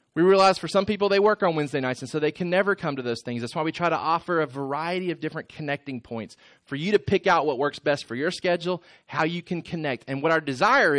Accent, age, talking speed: American, 30-49, 275 wpm